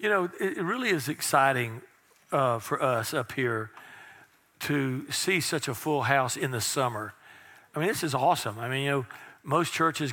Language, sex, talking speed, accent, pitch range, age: English, male, 185 wpm, American, 135-165 Hz, 50-69